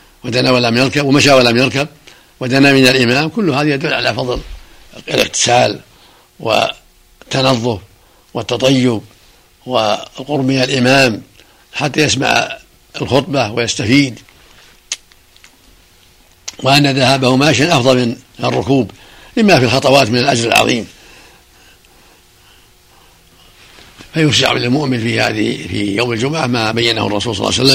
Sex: male